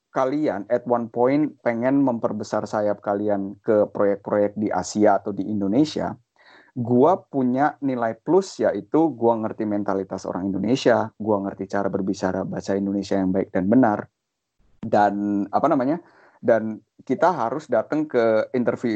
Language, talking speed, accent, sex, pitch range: Indonesian, 140 wpm, native, male, 110-145 Hz